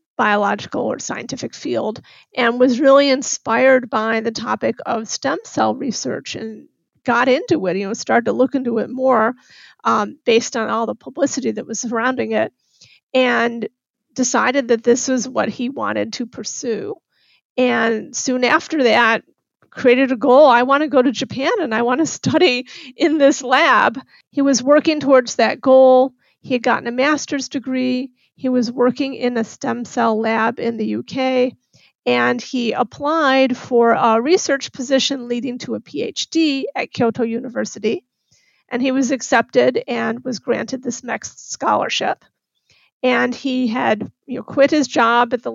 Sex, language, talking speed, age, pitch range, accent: female, English, 160 wpm, 40-59, 235-265 Hz, American